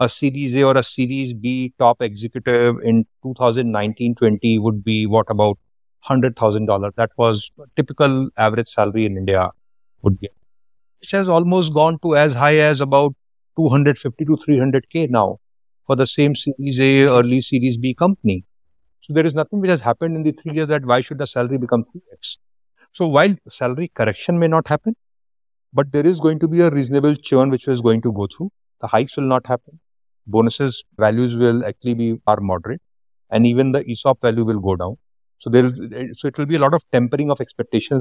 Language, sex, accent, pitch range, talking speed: English, male, Indian, 115-140 Hz, 200 wpm